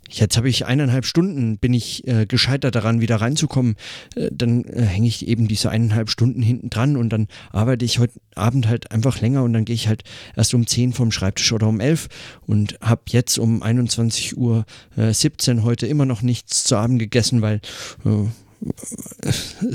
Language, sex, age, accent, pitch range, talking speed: German, male, 40-59, German, 100-120 Hz, 190 wpm